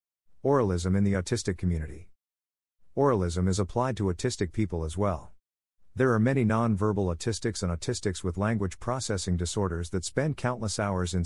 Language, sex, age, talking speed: English, male, 50-69, 160 wpm